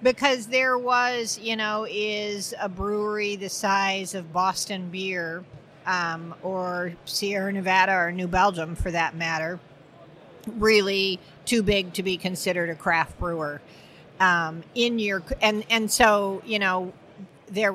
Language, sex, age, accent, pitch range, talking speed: English, female, 50-69, American, 175-215 Hz, 140 wpm